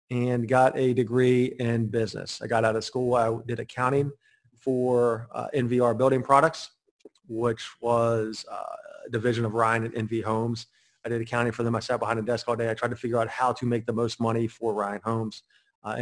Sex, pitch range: male, 115-130 Hz